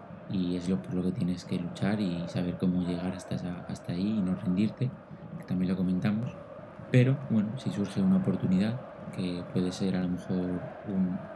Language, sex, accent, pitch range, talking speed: Spanish, male, Spanish, 90-120 Hz, 195 wpm